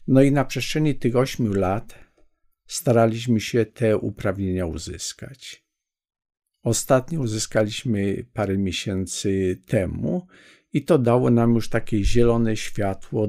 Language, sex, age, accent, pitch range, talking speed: Polish, male, 50-69, native, 100-120 Hz, 115 wpm